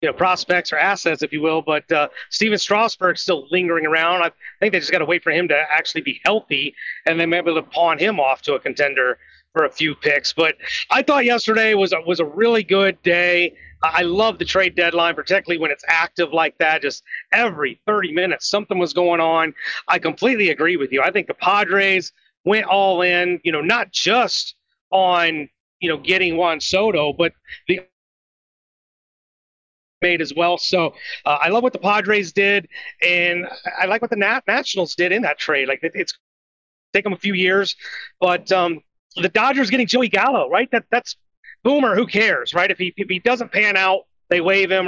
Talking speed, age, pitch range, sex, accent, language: 200 wpm, 30-49, 165-205 Hz, male, American, English